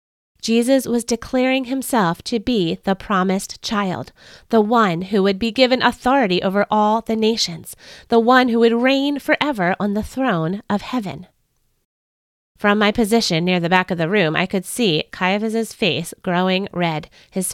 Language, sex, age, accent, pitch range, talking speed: English, female, 30-49, American, 175-235 Hz, 165 wpm